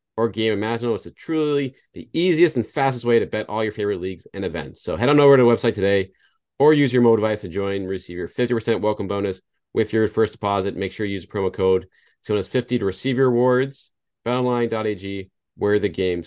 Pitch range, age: 90-120 Hz, 30-49